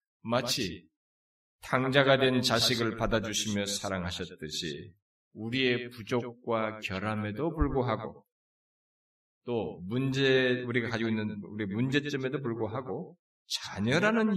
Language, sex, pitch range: Korean, male, 100-155 Hz